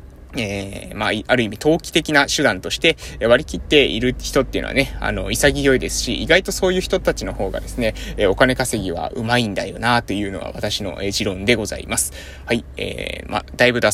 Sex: male